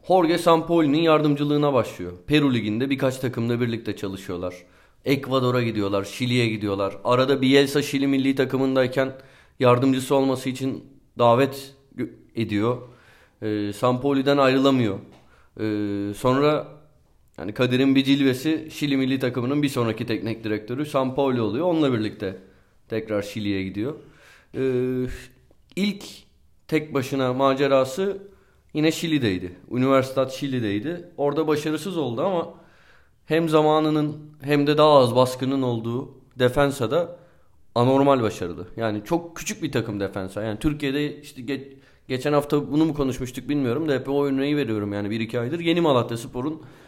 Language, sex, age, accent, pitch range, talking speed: Turkish, male, 30-49, native, 115-150 Hz, 130 wpm